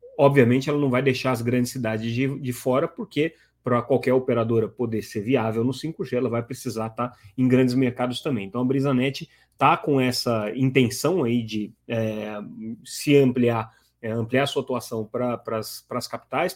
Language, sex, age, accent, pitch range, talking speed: Portuguese, male, 30-49, Brazilian, 115-130 Hz, 185 wpm